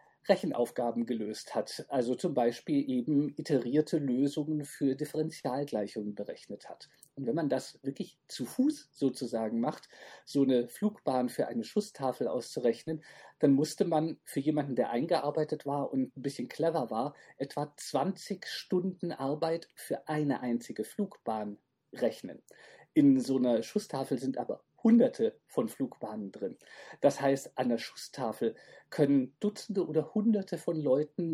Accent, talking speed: German, 140 wpm